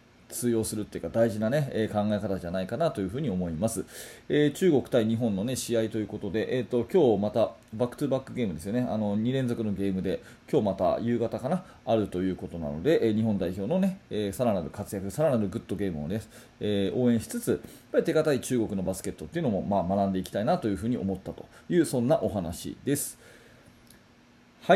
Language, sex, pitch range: Japanese, male, 100-125 Hz